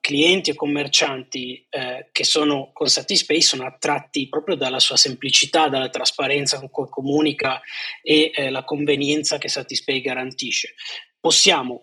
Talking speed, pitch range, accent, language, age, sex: 135 wpm, 135-155 Hz, native, Italian, 20-39, male